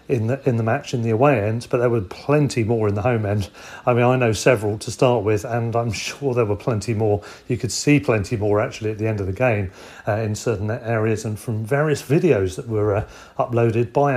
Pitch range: 110-140 Hz